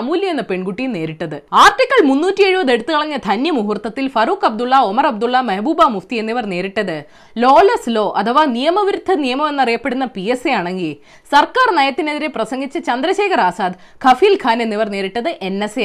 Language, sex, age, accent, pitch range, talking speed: Malayalam, female, 20-39, native, 215-360 Hz, 80 wpm